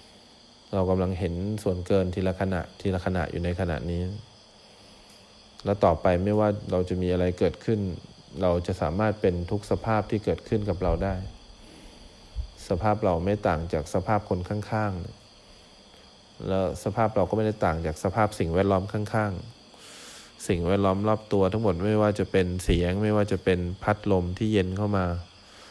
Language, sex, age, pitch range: English, male, 20-39, 90-105 Hz